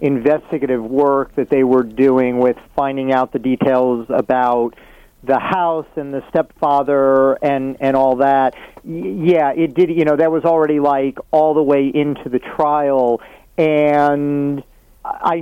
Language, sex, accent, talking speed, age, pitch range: English, male, American, 150 wpm, 40-59, 140-175 Hz